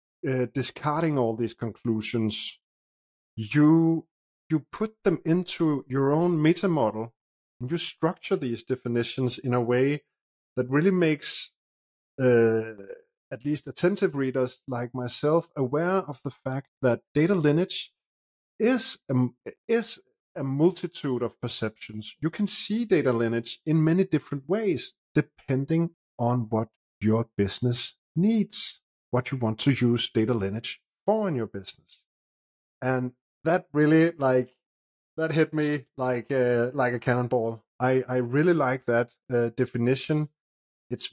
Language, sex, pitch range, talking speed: English, male, 120-160 Hz, 135 wpm